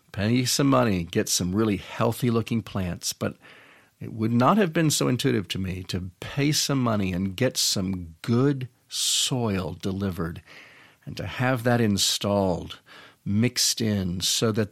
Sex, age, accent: male, 50-69, American